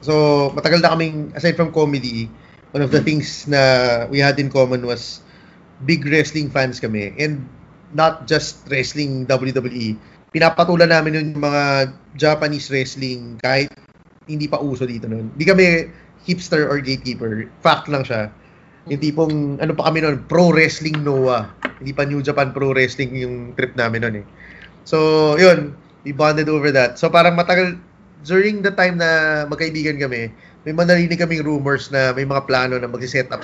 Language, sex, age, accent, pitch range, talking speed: English, male, 20-39, Filipino, 130-160 Hz, 160 wpm